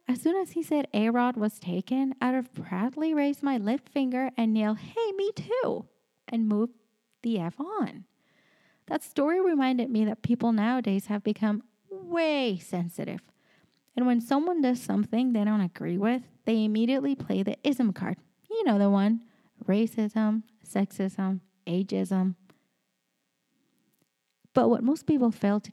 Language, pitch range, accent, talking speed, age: English, 205-265 Hz, American, 150 wpm, 30-49